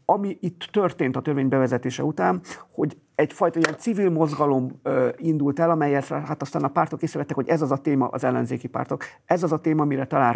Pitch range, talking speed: 130-155 Hz, 195 wpm